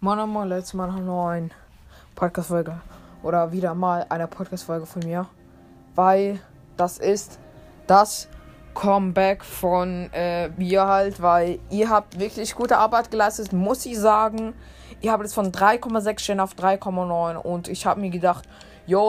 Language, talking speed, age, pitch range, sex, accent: German, 145 wpm, 20-39, 175-205 Hz, female, German